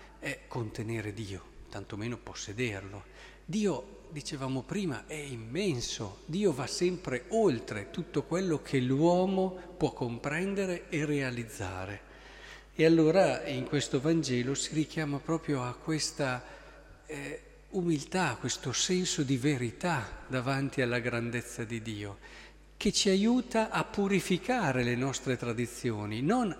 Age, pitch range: 50-69, 125-175 Hz